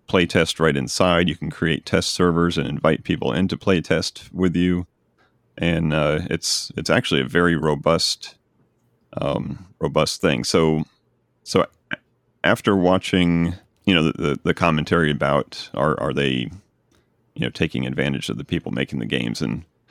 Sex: male